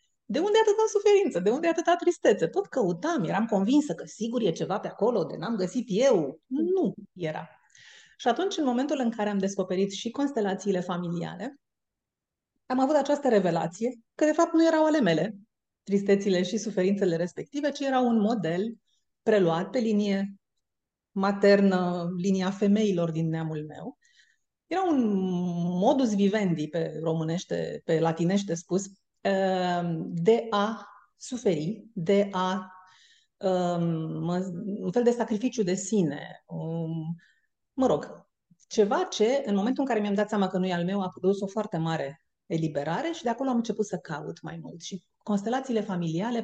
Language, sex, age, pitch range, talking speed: Romanian, female, 30-49, 175-230 Hz, 155 wpm